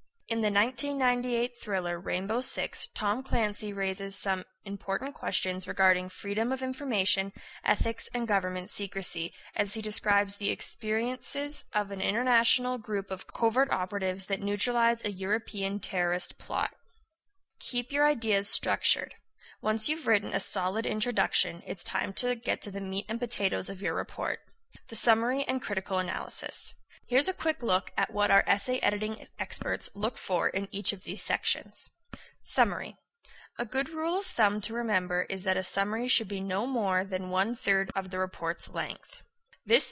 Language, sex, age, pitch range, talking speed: English, female, 20-39, 190-240 Hz, 160 wpm